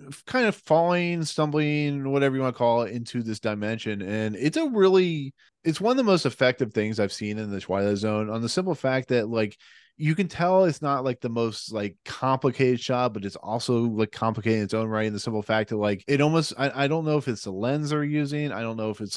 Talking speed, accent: 245 wpm, American